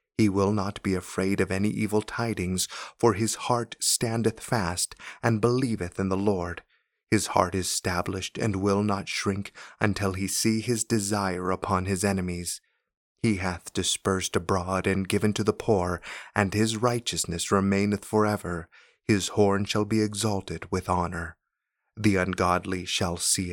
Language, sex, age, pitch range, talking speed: English, male, 30-49, 95-105 Hz, 155 wpm